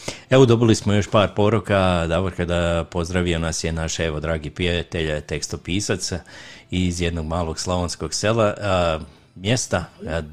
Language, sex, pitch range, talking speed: Croatian, male, 80-95 Hz, 140 wpm